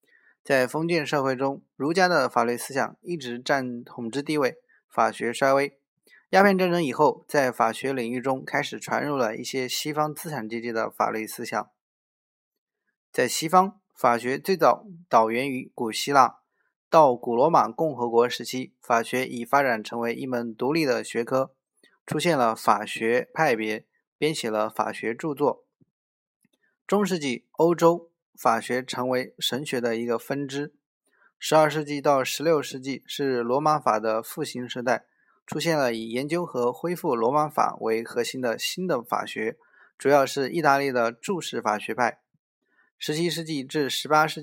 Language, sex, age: Chinese, male, 20-39